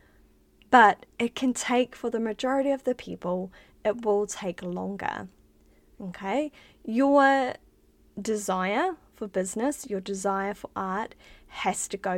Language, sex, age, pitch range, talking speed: English, female, 20-39, 185-240 Hz, 130 wpm